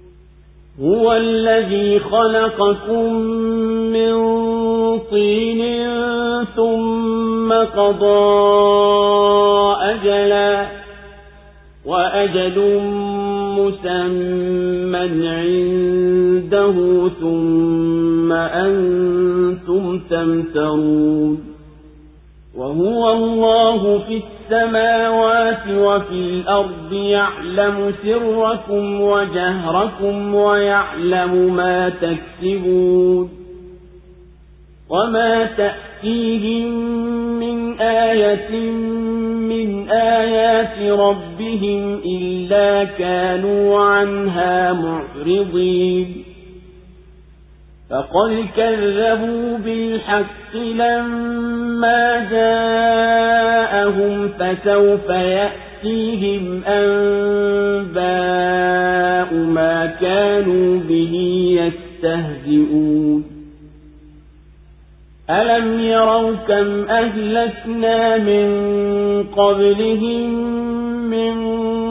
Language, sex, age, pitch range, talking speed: Swahili, male, 50-69, 180-225 Hz, 45 wpm